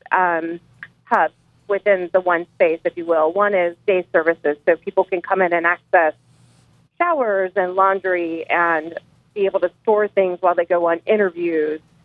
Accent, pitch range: American, 175-200 Hz